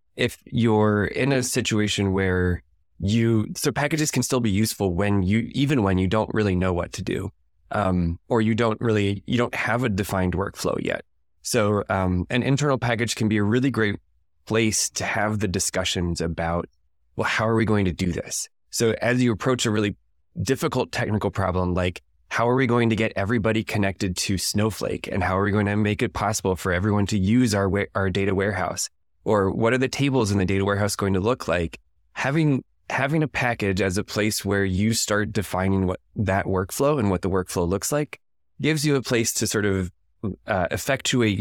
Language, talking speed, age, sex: English, 200 wpm, 20-39, male